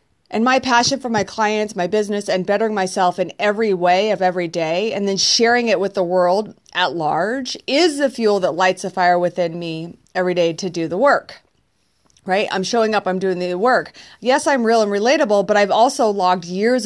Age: 30-49